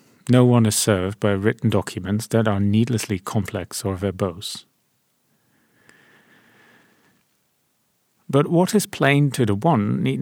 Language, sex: English, male